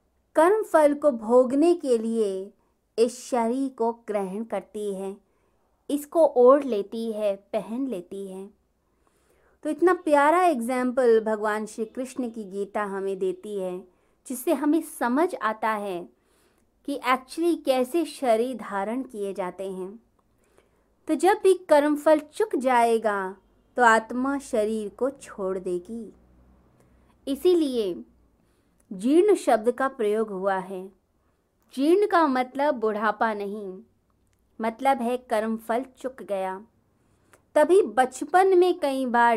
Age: 20-39